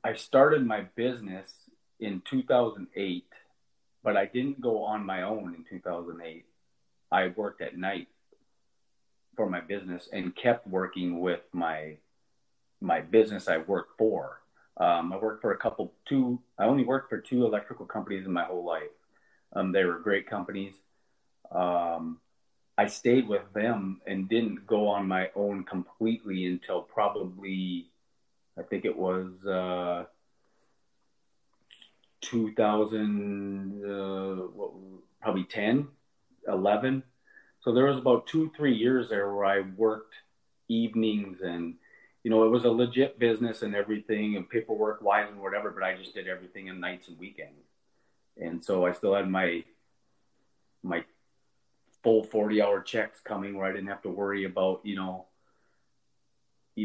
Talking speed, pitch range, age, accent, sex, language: 145 wpm, 90-110 Hz, 30-49, American, male, English